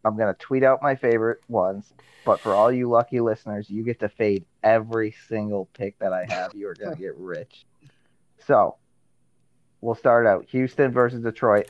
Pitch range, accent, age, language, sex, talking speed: 100-120 Hz, American, 30-49, English, male, 190 wpm